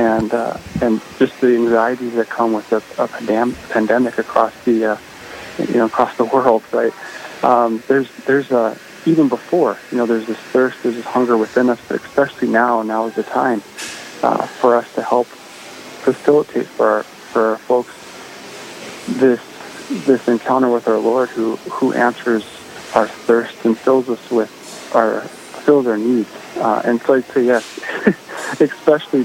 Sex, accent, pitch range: male, American, 115-125 Hz